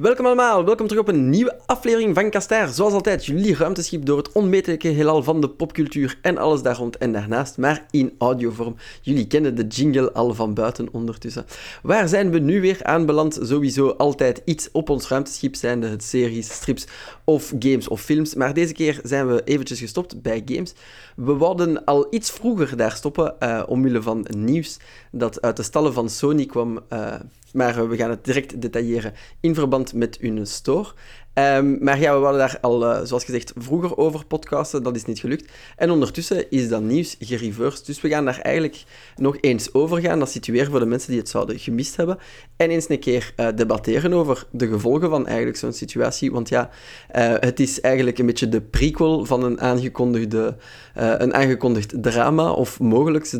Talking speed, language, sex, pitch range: 195 wpm, Dutch, male, 120-155 Hz